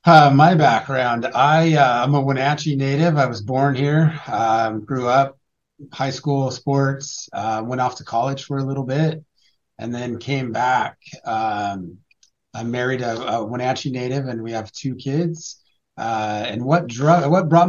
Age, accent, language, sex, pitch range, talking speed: 30-49, American, English, male, 120-140 Hz, 170 wpm